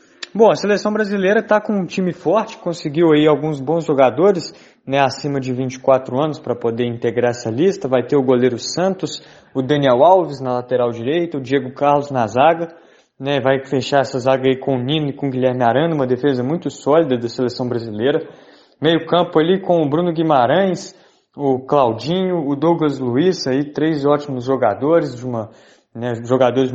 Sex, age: male, 20-39